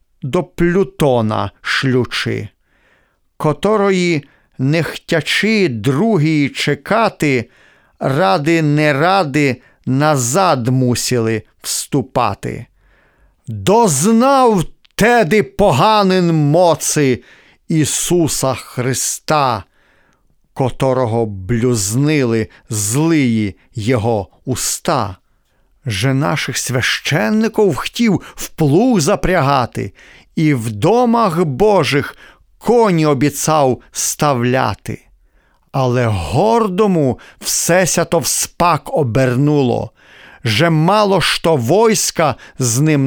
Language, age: Ukrainian, 40-59